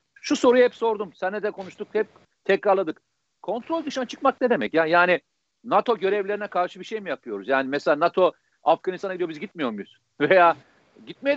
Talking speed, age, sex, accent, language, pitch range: 170 wpm, 60-79, male, native, Turkish, 185-230 Hz